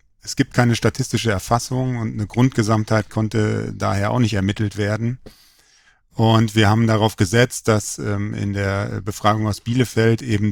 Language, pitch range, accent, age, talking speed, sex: German, 105-120 Hz, German, 40-59, 155 wpm, male